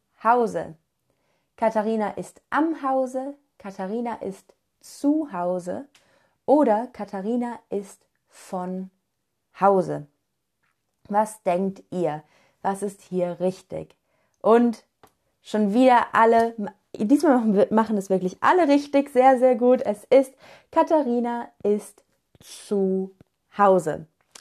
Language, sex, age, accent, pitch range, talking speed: German, female, 20-39, German, 190-260 Hz, 100 wpm